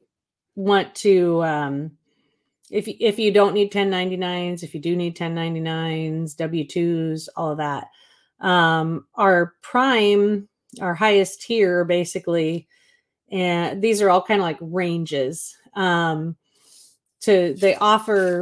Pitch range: 165-195 Hz